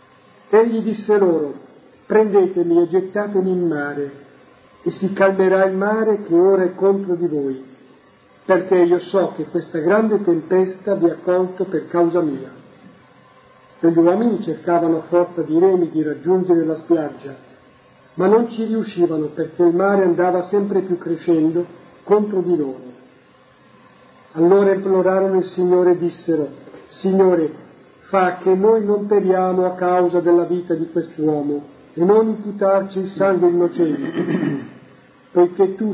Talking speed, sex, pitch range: 140 wpm, male, 155-190 Hz